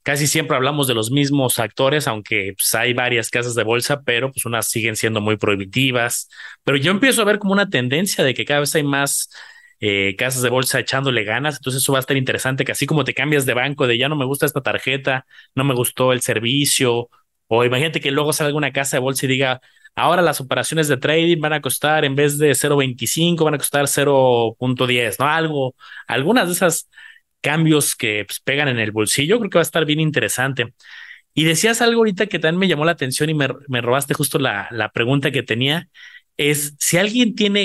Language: Spanish